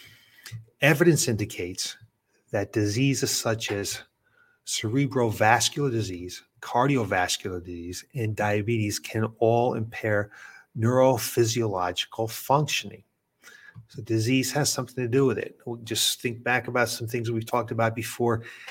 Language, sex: English, male